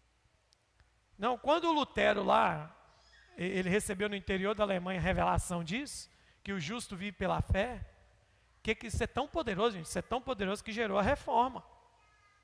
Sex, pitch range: male, 205-275 Hz